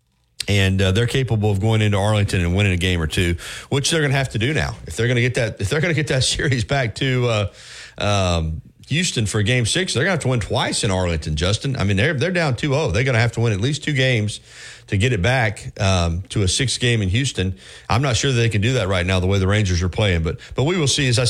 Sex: male